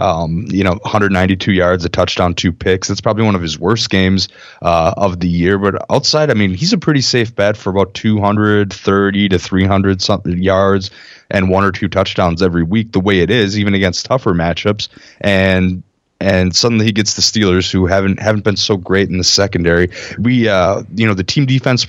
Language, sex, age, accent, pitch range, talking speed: English, male, 20-39, American, 90-105 Hz, 200 wpm